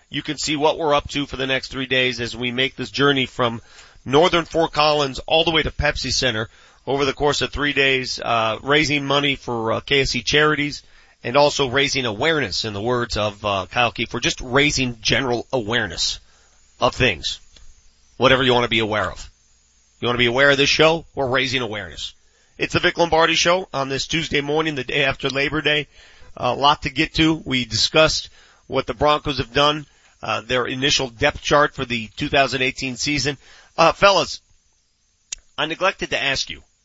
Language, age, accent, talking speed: English, 40-59, American, 190 wpm